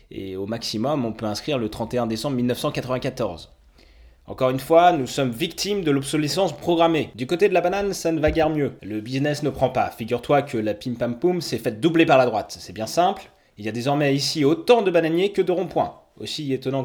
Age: 20-39